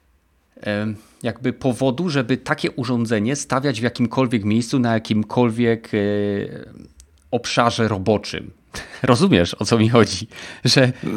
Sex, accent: male, native